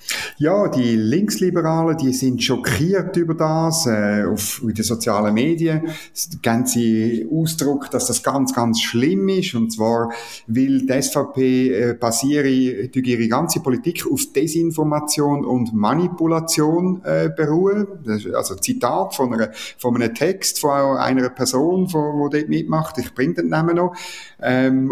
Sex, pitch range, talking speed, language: male, 125-165 Hz, 140 wpm, German